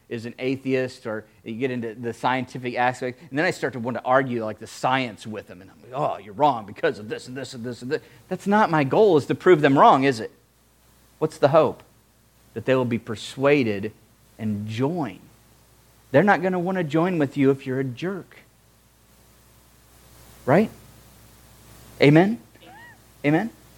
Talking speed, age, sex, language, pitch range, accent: 190 wpm, 40-59, male, English, 115-140 Hz, American